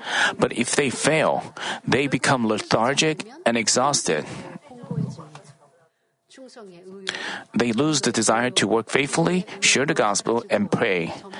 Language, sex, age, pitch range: Korean, male, 40-59, 130-220 Hz